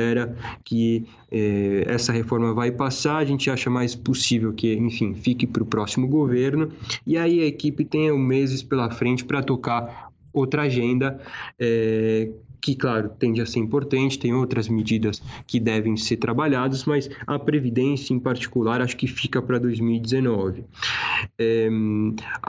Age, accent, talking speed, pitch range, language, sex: 20-39, Brazilian, 145 wpm, 115-155 Hz, Portuguese, male